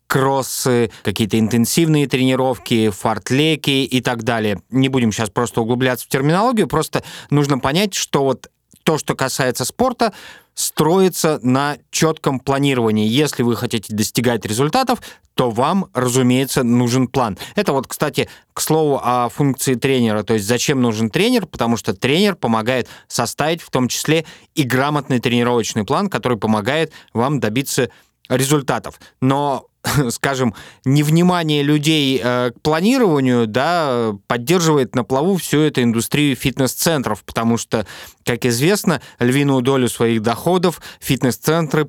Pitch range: 120-150 Hz